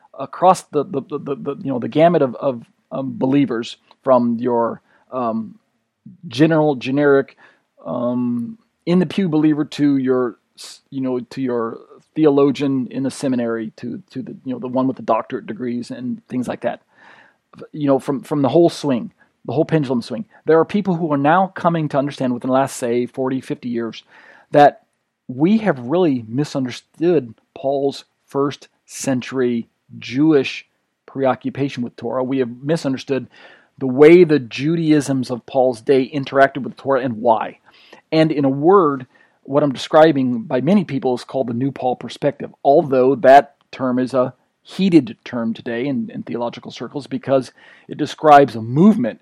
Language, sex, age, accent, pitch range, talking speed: English, male, 40-59, American, 125-155 Hz, 165 wpm